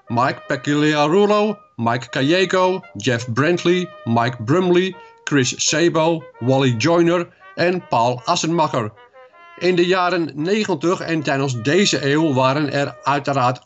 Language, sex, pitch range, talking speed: Dutch, male, 135-180 Hz, 115 wpm